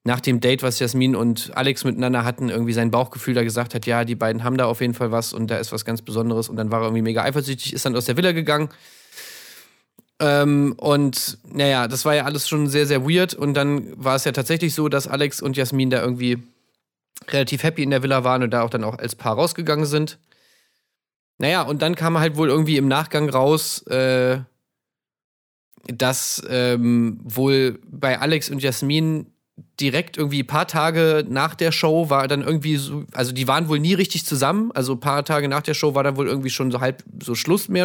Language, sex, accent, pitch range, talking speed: German, male, German, 125-150 Hz, 215 wpm